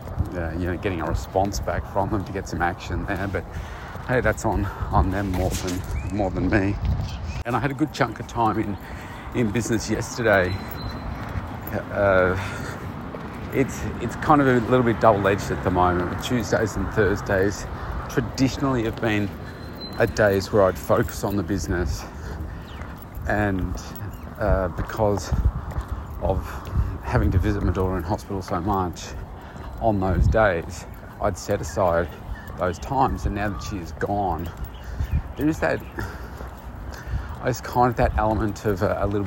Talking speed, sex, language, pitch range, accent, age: 155 wpm, male, English, 85-105 Hz, Australian, 40-59